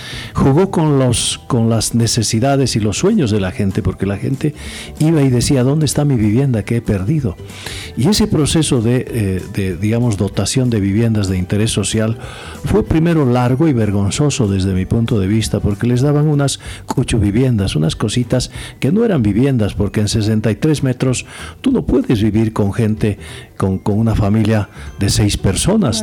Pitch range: 100-125 Hz